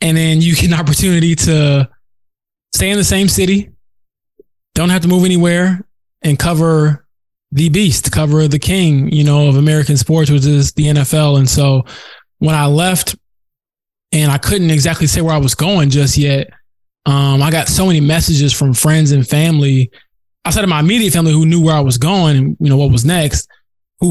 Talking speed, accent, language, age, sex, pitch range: 195 wpm, American, English, 20-39, male, 140-165 Hz